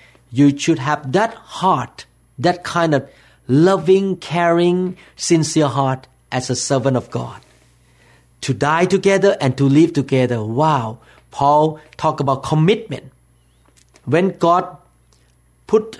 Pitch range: 120-160 Hz